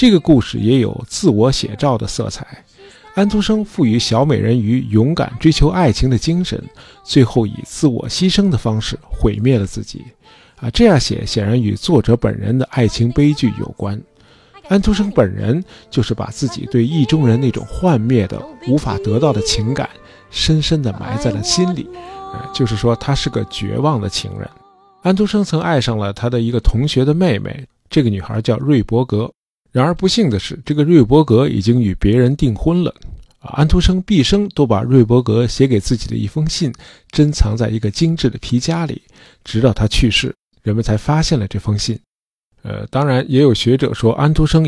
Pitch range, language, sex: 110-150 Hz, Chinese, male